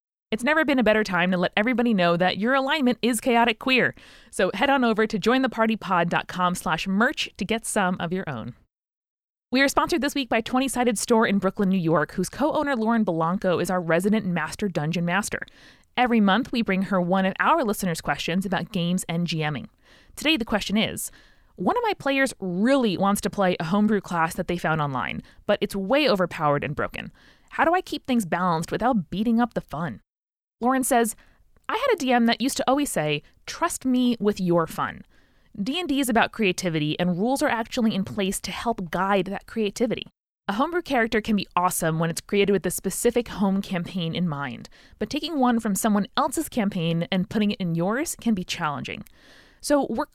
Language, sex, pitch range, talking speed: English, female, 180-250 Hz, 195 wpm